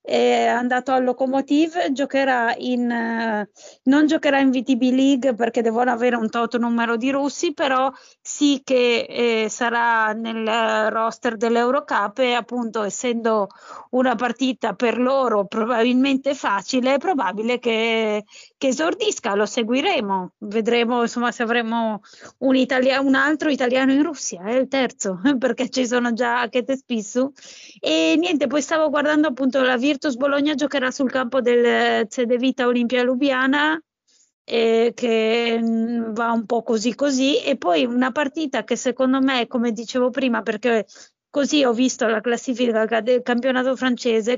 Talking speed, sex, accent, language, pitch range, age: 145 wpm, female, native, Italian, 230-265 Hz, 20-39